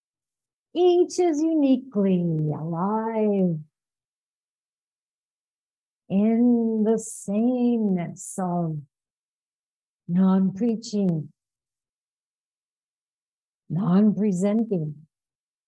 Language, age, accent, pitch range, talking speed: English, 60-79, American, 165-220 Hz, 45 wpm